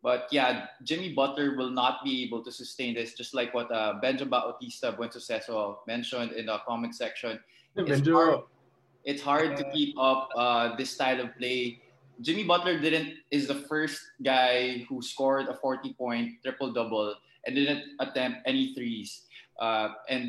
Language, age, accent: English, 20-39, Filipino